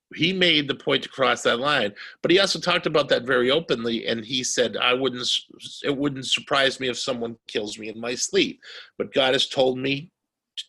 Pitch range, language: 120-165 Hz, English